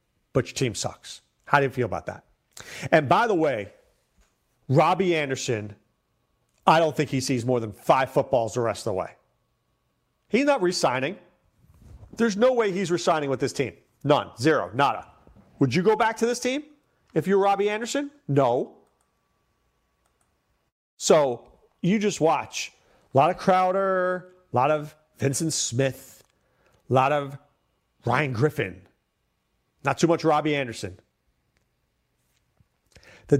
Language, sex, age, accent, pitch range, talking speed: English, male, 40-59, American, 120-170 Hz, 145 wpm